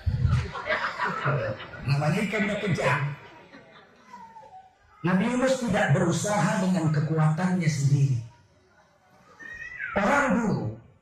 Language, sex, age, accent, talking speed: Indonesian, male, 50-69, native, 65 wpm